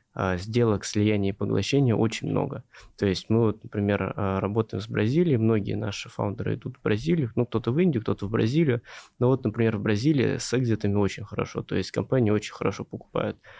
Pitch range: 105-120 Hz